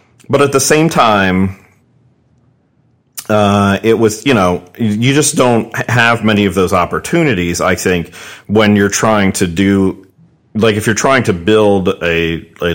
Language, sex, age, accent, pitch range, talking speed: English, male, 30-49, American, 90-120 Hz, 155 wpm